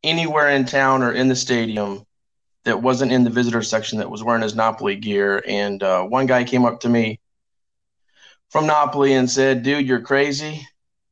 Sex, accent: male, American